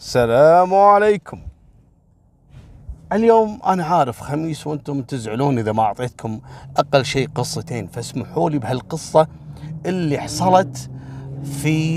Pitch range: 120-165 Hz